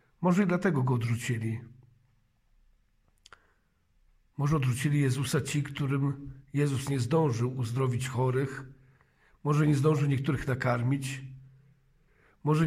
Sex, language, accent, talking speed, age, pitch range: male, Polish, native, 100 wpm, 50-69, 130-145 Hz